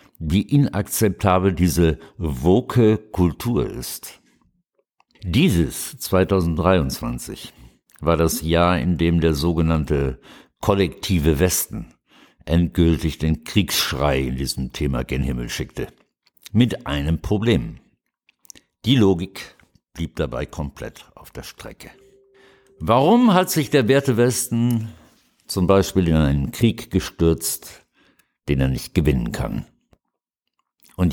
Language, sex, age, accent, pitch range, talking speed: German, male, 60-79, German, 75-105 Hz, 105 wpm